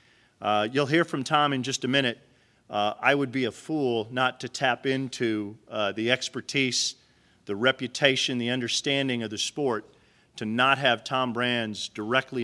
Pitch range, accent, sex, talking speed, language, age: 115-135 Hz, American, male, 170 wpm, English, 40-59